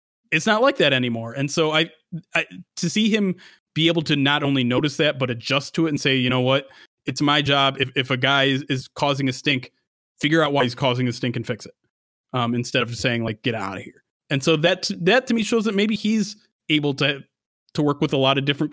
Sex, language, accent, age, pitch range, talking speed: male, English, American, 30-49, 130-170 Hz, 250 wpm